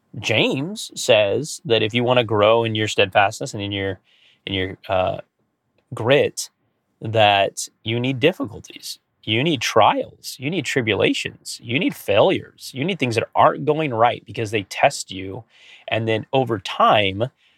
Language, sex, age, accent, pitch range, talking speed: English, male, 30-49, American, 100-120 Hz, 155 wpm